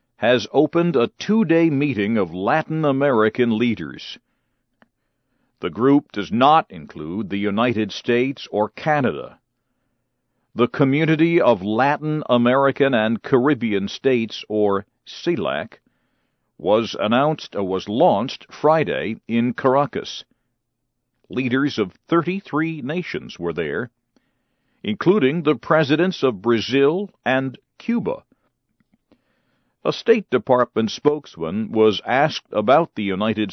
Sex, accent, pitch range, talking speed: male, American, 115-155 Hz, 105 wpm